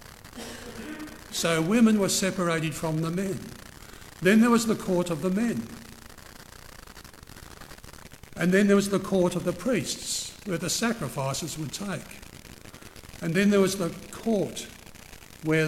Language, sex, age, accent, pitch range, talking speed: English, male, 60-79, British, 160-215 Hz, 140 wpm